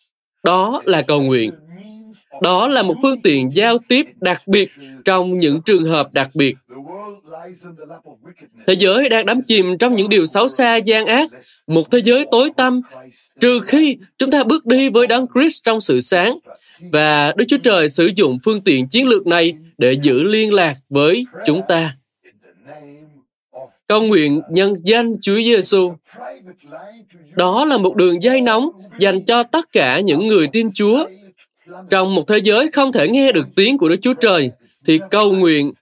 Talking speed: 170 wpm